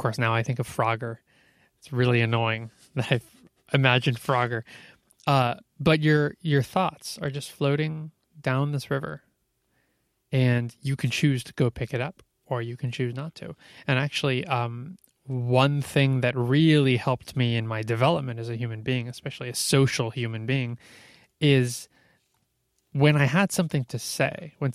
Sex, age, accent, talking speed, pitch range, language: male, 20-39, American, 165 wpm, 120-145 Hz, English